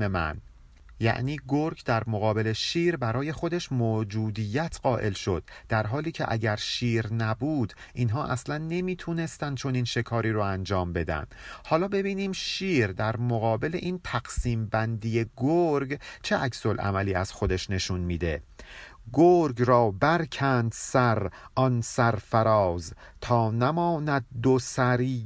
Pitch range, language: 110-145 Hz, Persian